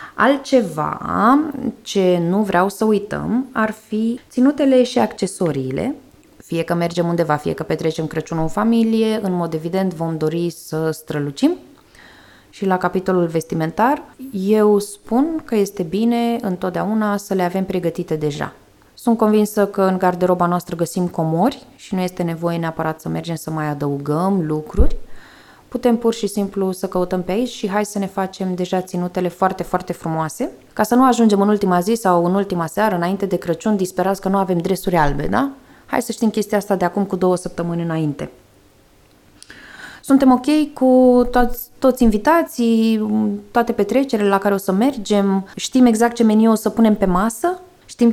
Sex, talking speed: female, 170 wpm